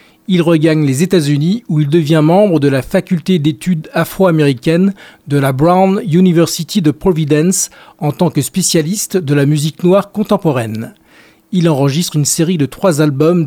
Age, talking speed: 40-59, 165 wpm